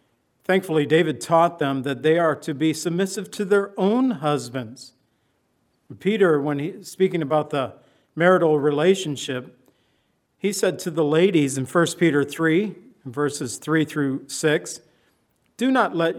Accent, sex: American, male